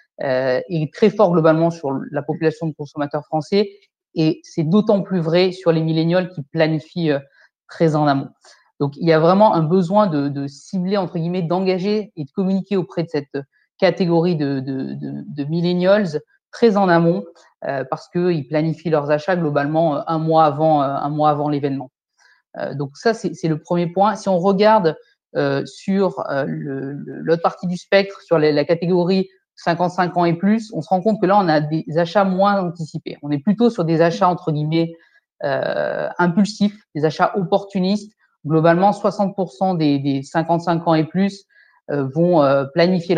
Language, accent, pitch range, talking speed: French, French, 155-190 Hz, 170 wpm